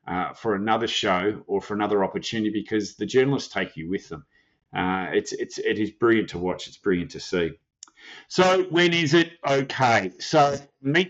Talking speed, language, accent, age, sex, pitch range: 185 wpm, English, Australian, 40-59, male, 105-130 Hz